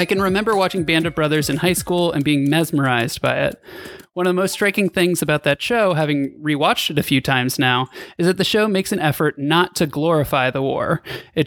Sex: male